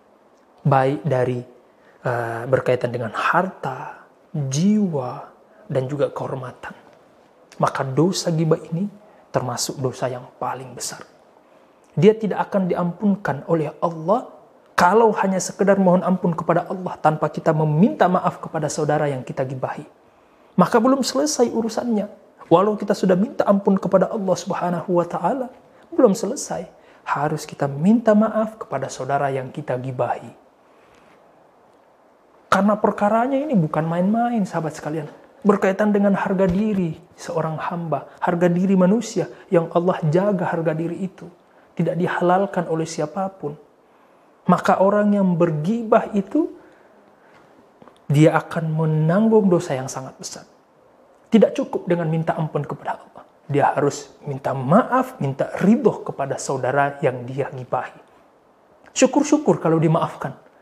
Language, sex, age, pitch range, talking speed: Indonesian, male, 30-49, 155-205 Hz, 125 wpm